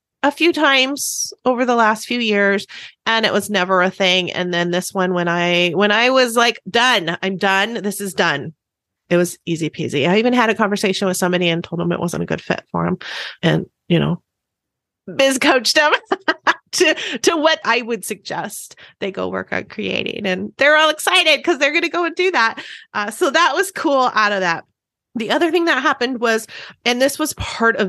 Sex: female